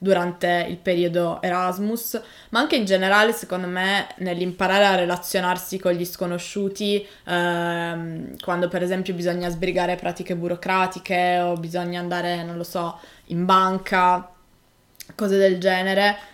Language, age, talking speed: Italian, 20-39, 130 wpm